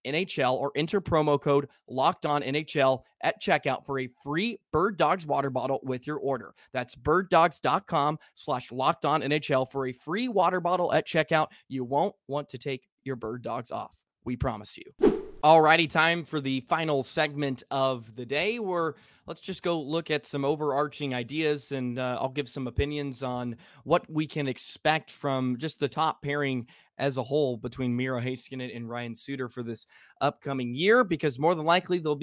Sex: male